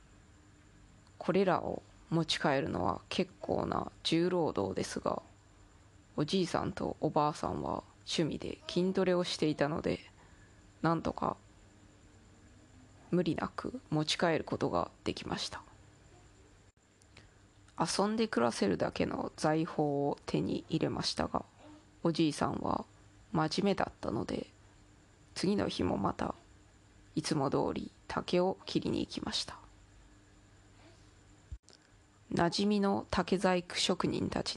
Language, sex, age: Japanese, female, 20-39